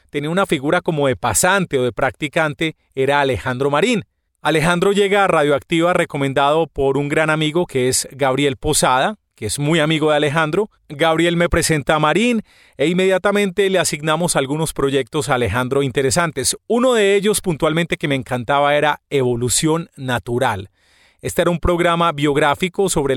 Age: 30-49